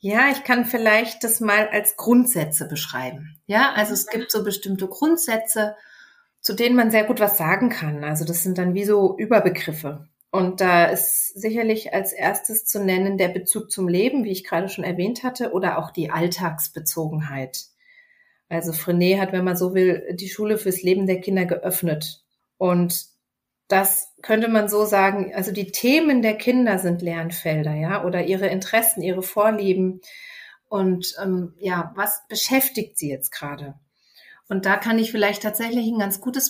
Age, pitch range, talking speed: 40-59, 175-220 Hz, 170 wpm